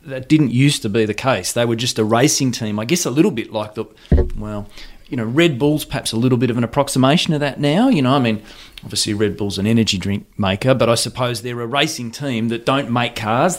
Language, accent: English, Australian